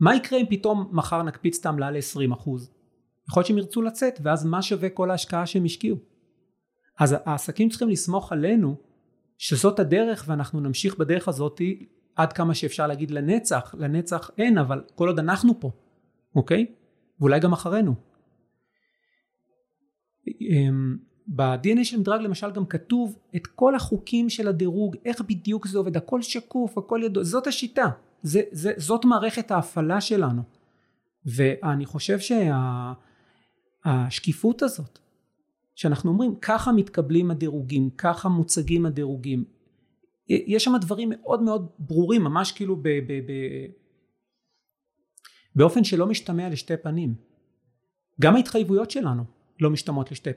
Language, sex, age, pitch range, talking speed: Hebrew, male, 40-59, 145-210 Hz, 130 wpm